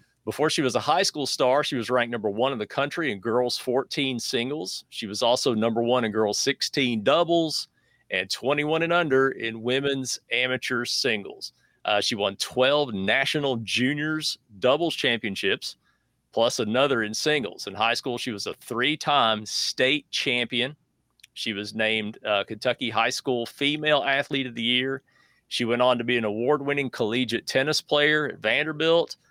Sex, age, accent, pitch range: male, 40-59, American, 120-150 Hz